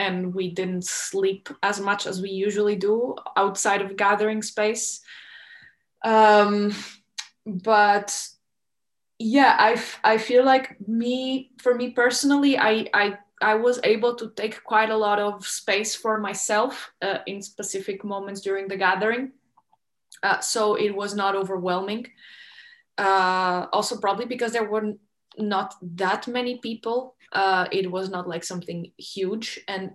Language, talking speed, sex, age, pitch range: English, 140 wpm, female, 20-39, 190-215 Hz